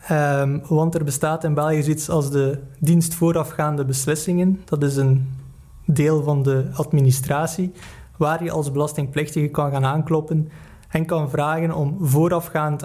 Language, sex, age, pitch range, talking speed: Dutch, male, 20-39, 145-165 Hz, 140 wpm